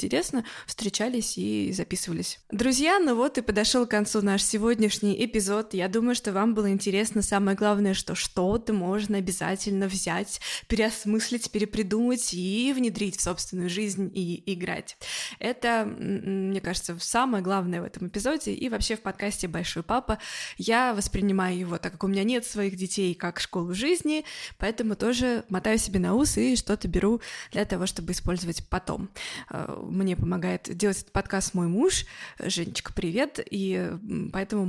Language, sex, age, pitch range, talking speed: Russian, female, 20-39, 190-225 Hz, 155 wpm